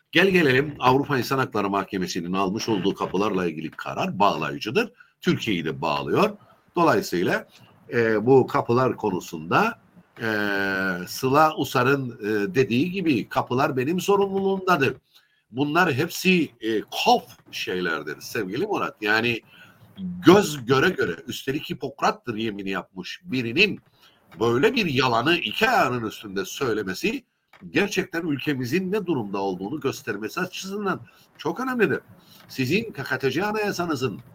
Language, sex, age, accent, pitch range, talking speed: Turkish, male, 60-79, native, 125-180 Hz, 110 wpm